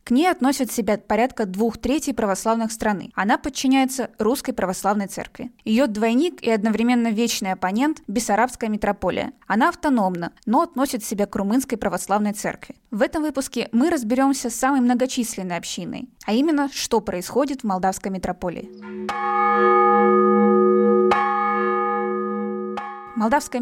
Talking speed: 125 wpm